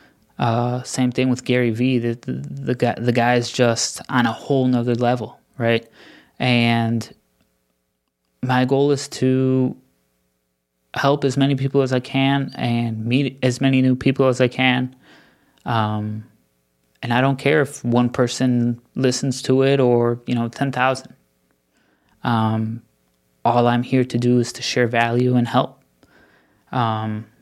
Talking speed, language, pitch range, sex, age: 150 wpm, English, 115-130 Hz, male, 20-39